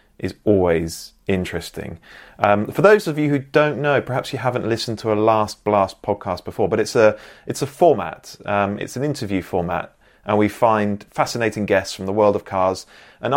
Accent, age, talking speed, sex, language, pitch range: British, 30-49, 195 wpm, male, English, 95-115 Hz